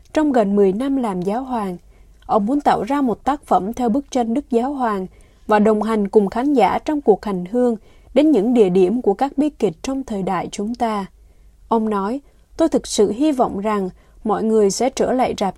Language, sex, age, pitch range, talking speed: Vietnamese, female, 20-39, 205-260 Hz, 220 wpm